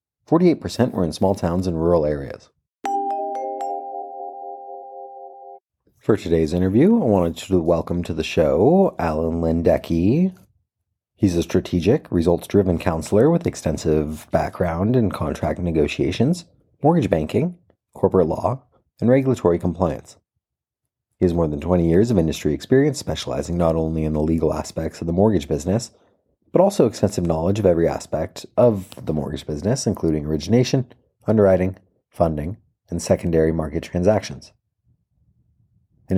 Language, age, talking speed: English, 30-49, 130 wpm